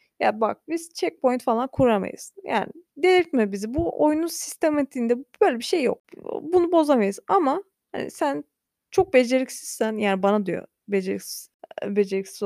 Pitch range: 195-275 Hz